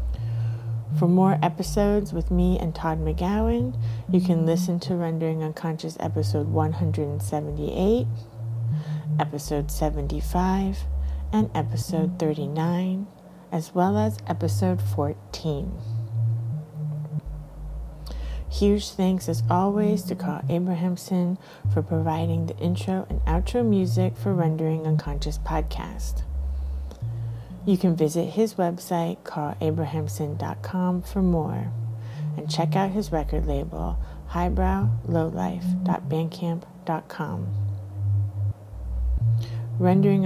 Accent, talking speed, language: American, 90 wpm, English